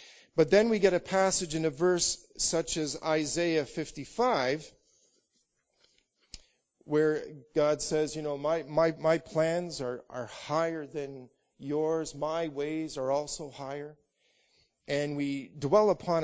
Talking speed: 130 wpm